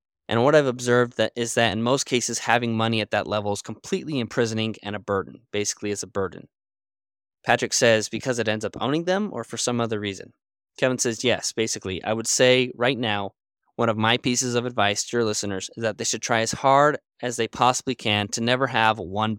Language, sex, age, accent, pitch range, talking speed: English, male, 20-39, American, 105-125 Hz, 220 wpm